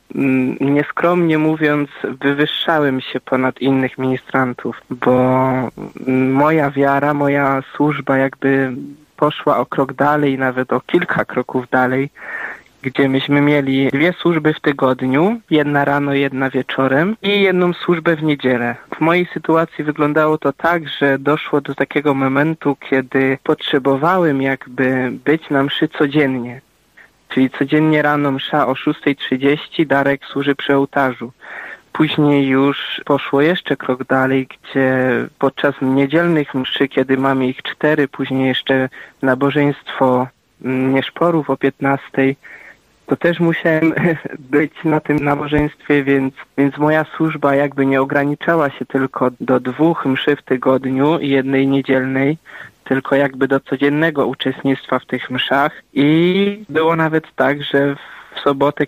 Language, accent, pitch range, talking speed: Polish, native, 135-150 Hz, 125 wpm